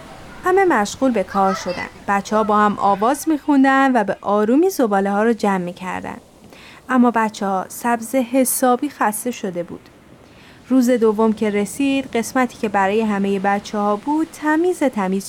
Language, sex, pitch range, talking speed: Persian, female, 205-255 Hz, 155 wpm